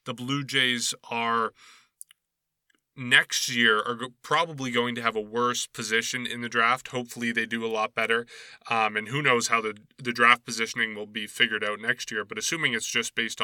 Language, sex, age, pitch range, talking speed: English, male, 20-39, 110-130 Hz, 190 wpm